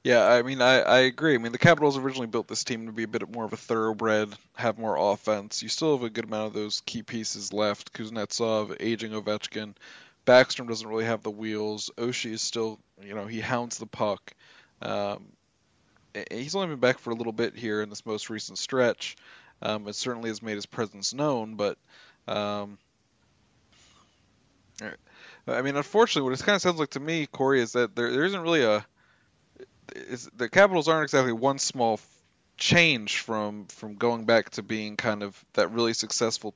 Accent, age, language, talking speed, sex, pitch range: American, 20-39, English, 190 wpm, male, 105-125 Hz